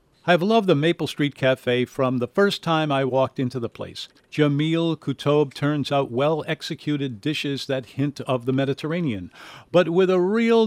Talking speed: 170 wpm